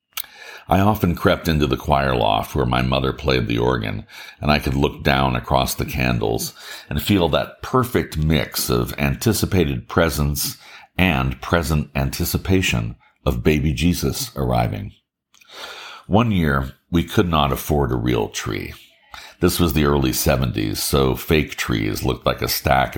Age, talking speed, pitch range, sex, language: 60-79, 150 wpm, 65-85 Hz, male, English